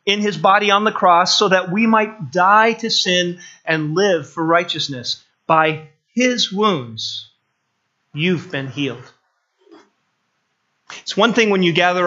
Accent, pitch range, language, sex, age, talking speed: American, 150-185 Hz, English, male, 30-49, 145 wpm